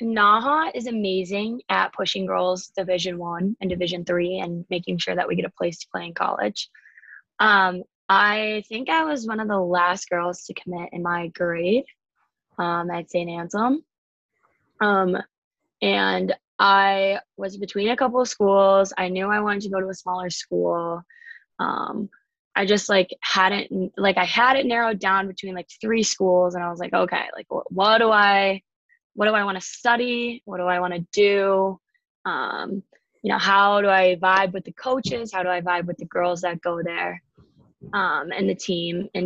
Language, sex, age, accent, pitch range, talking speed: English, female, 20-39, American, 180-220 Hz, 190 wpm